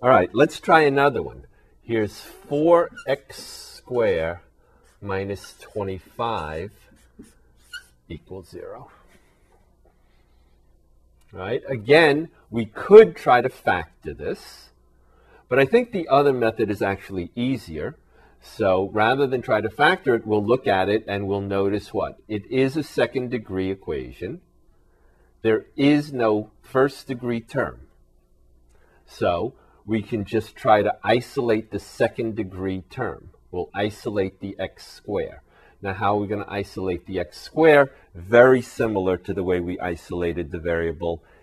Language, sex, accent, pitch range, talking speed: English, male, American, 85-115 Hz, 125 wpm